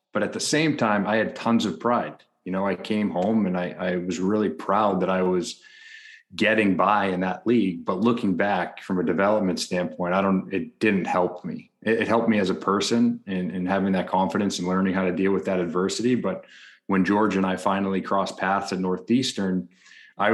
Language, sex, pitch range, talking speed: English, male, 95-105 Hz, 210 wpm